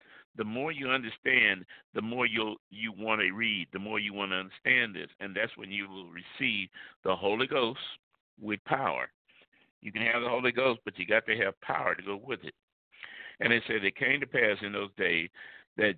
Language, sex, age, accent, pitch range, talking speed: English, male, 60-79, American, 100-120 Hz, 210 wpm